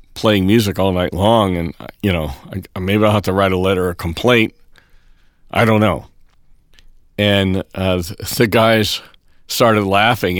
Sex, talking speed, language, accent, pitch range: male, 155 wpm, English, American, 90-115 Hz